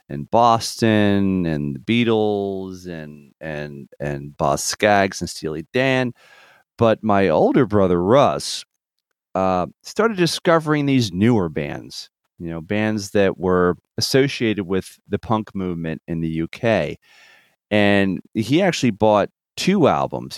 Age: 40-59